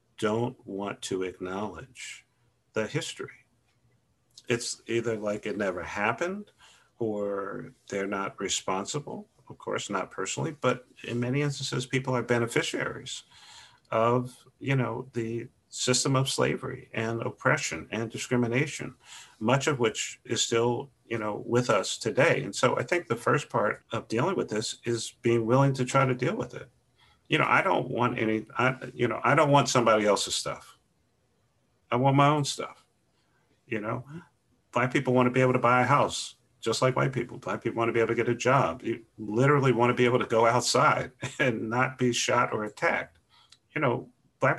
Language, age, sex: English, 50-69, male